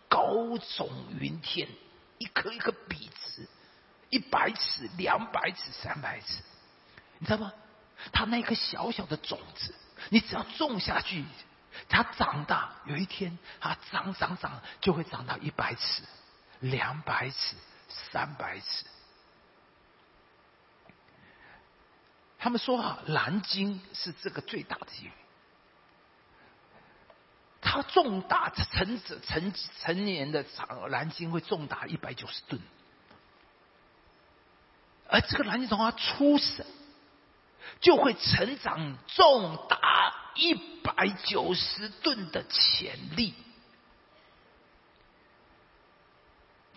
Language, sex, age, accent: Chinese, male, 50-69, native